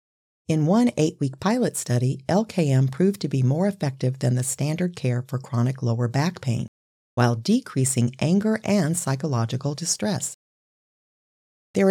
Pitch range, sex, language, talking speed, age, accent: 130-180 Hz, female, English, 135 wpm, 40-59, American